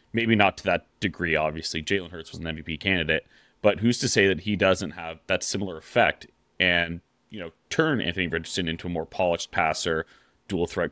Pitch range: 85-105 Hz